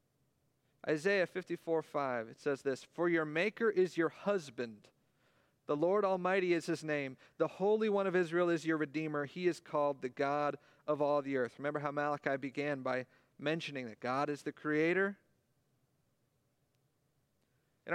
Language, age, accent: English, 40-59, American